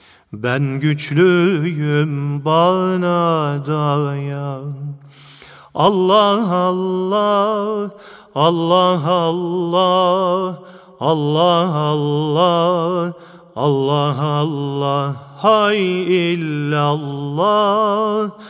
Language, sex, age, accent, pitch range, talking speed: Turkish, male, 40-59, native, 150-210 Hz, 45 wpm